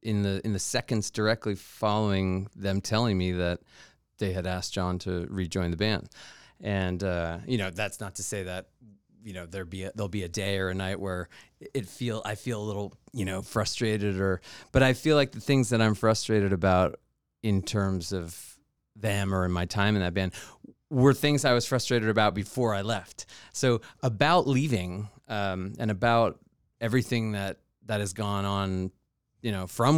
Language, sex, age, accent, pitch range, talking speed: English, male, 30-49, American, 95-120 Hz, 190 wpm